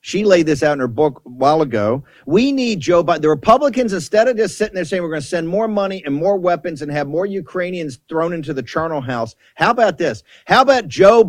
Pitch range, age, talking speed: 170-230 Hz, 50-69, 245 wpm